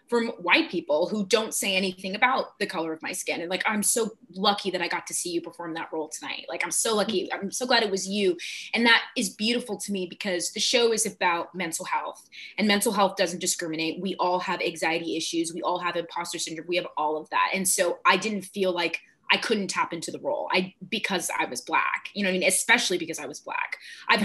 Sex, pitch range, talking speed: female, 175-215 Hz, 245 wpm